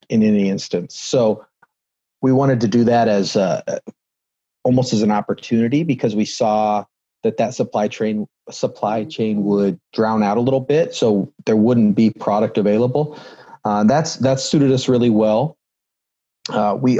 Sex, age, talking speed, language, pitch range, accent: male, 30-49, 160 wpm, English, 105-120 Hz, American